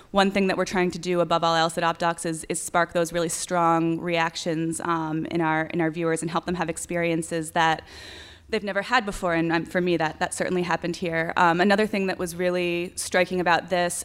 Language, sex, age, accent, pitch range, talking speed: English, female, 20-39, American, 165-180 Hz, 225 wpm